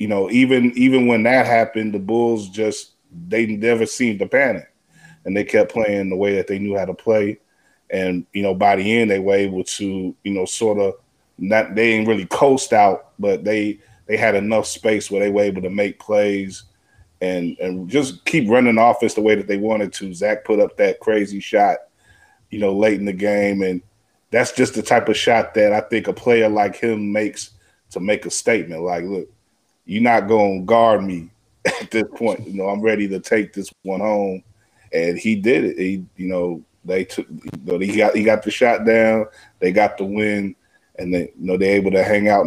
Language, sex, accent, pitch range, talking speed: English, male, American, 95-115 Hz, 215 wpm